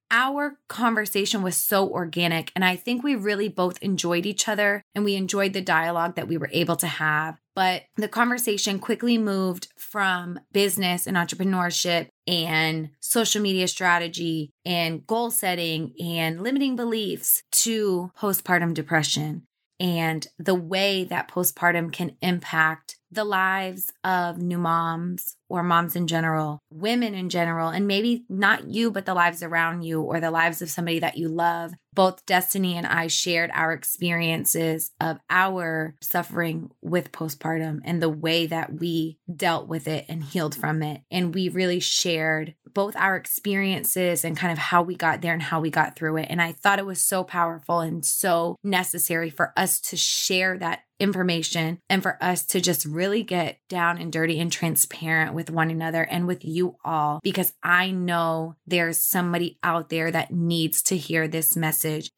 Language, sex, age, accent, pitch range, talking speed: English, female, 20-39, American, 165-190 Hz, 170 wpm